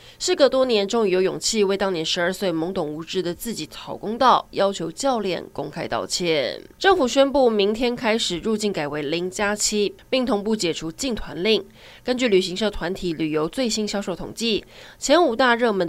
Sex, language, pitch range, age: female, Chinese, 185-235 Hz, 20-39